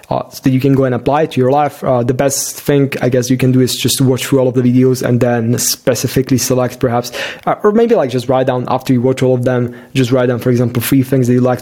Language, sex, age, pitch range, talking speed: English, male, 20-39, 120-140 Hz, 300 wpm